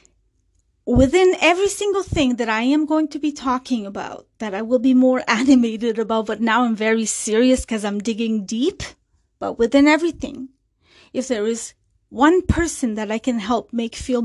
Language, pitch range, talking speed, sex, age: English, 220-275 Hz, 175 wpm, female, 30-49